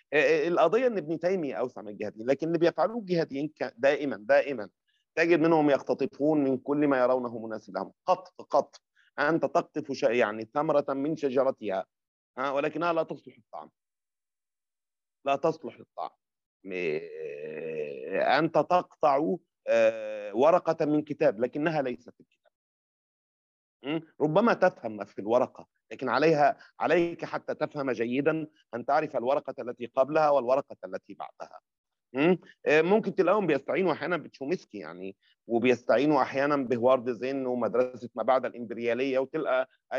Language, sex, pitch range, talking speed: Arabic, male, 125-165 Hz, 120 wpm